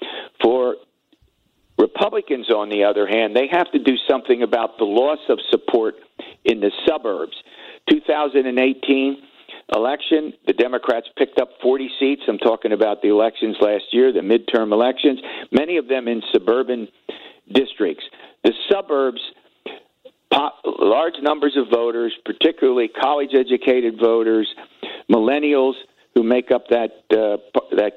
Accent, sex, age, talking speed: American, male, 50-69, 130 wpm